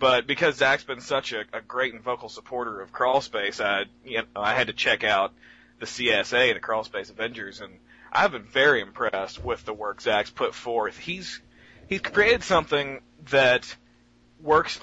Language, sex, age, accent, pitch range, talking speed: English, male, 30-49, American, 120-155 Hz, 180 wpm